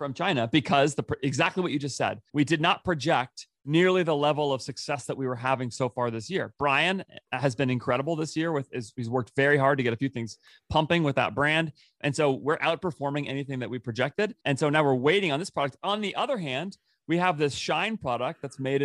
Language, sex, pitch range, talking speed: English, male, 135-165 Hz, 230 wpm